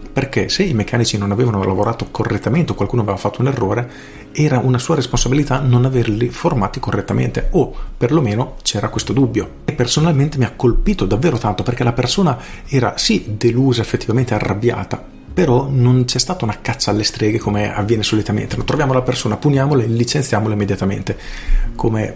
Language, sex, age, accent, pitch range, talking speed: Italian, male, 40-59, native, 105-125 Hz, 170 wpm